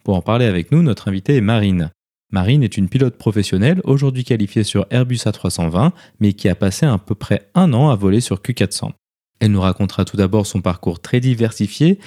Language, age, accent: French, 20-39, French